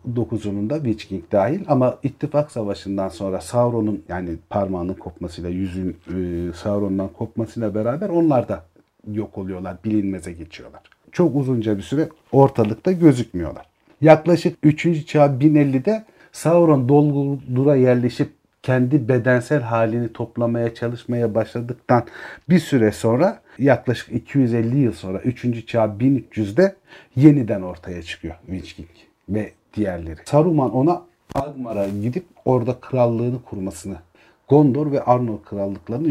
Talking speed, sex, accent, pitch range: 115 wpm, male, native, 100-150 Hz